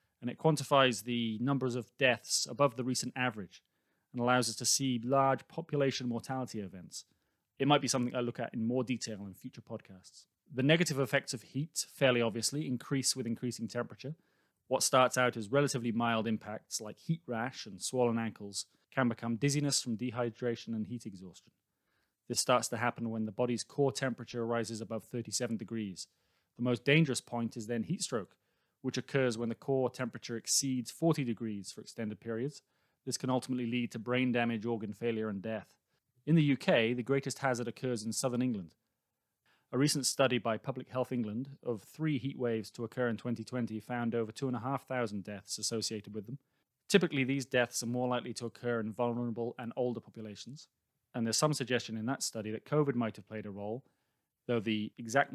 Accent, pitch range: British, 115-130 Hz